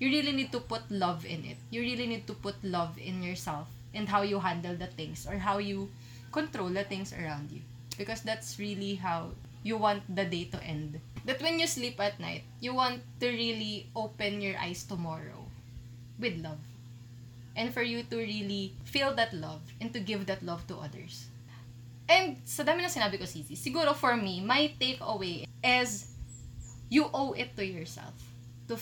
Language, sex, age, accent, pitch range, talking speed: Filipino, female, 20-39, native, 120-205 Hz, 185 wpm